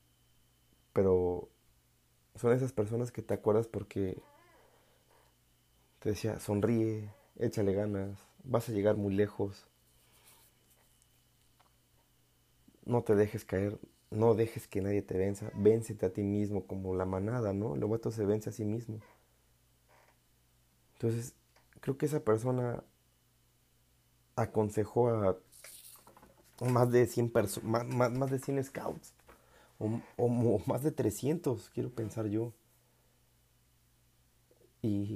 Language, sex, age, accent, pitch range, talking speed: Spanish, male, 30-49, Mexican, 100-120 Hz, 120 wpm